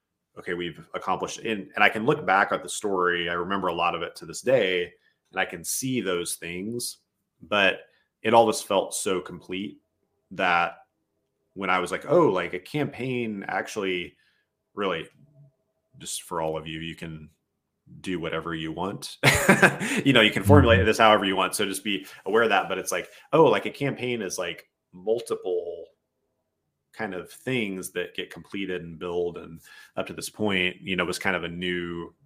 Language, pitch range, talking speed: English, 85-120 Hz, 190 wpm